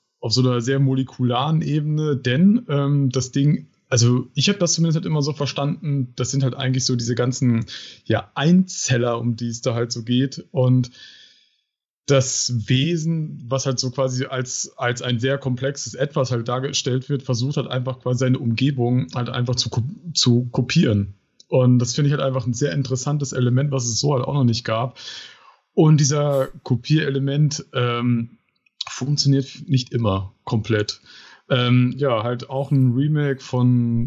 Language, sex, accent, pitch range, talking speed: German, male, German, 120-140 Hz, 165 wpm